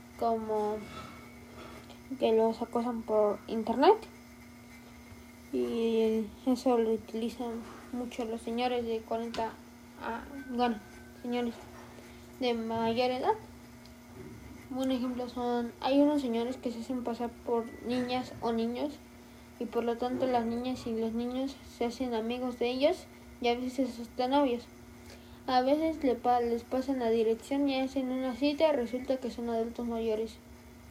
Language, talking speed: Spanish, 135 wpm